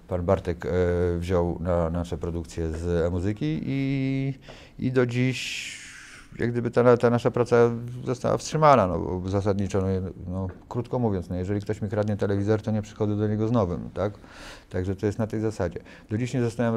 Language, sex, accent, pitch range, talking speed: Polish, male, native, 90-110 Hz, 180 wpm